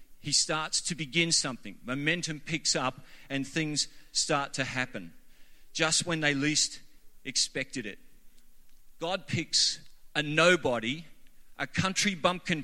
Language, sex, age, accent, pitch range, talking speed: English, male, 40-59, Australian, 135-175 Hz, 125 wpm